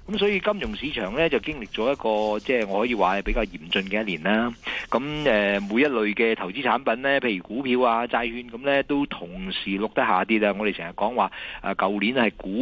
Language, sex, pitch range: Chinese, male, 100-140 Hz